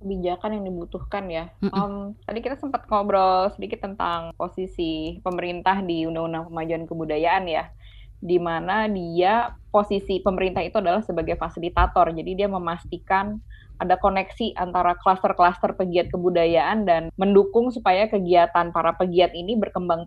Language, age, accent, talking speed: Indonesian, 20-39, native, 130 wpm